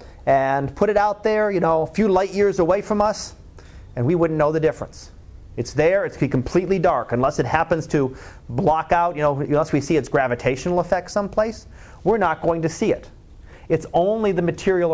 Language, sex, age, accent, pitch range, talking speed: English, male, 30-49, American, 140-185 Hz, 205 wpm